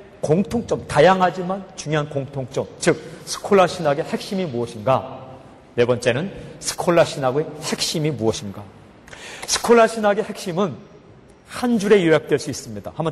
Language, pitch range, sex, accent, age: Korean, 130-180 Hz, male, native, 40-59